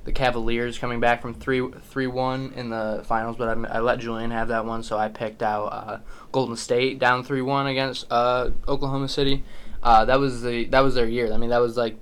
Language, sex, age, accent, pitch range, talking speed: English, male, 10-29, American, 110-125 Hz, 220 wpm